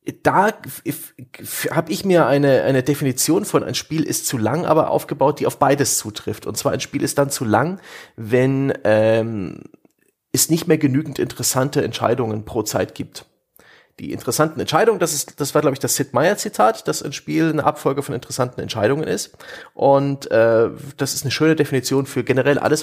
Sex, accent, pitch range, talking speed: male, German, 120-150 Hz, 185 wpm